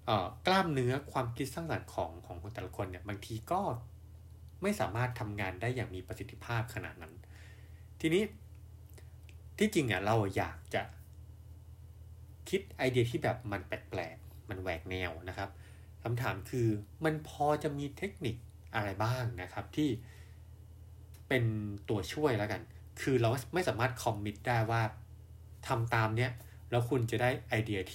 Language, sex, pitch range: English, male, 95-120 Hz